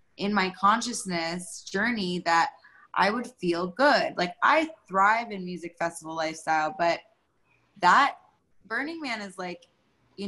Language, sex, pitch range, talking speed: English, female, 175-215 Hz, 135 wpm